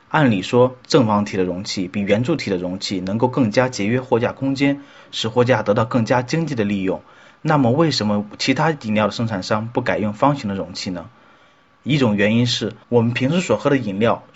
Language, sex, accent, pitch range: Chinese, male, native, 105-135 Hz